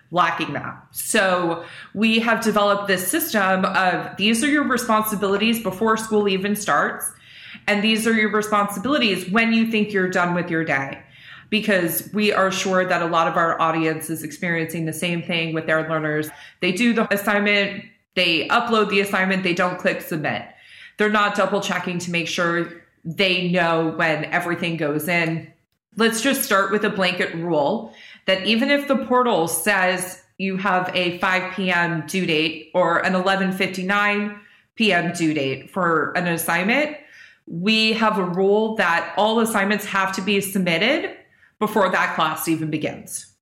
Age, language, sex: 20-39, English, female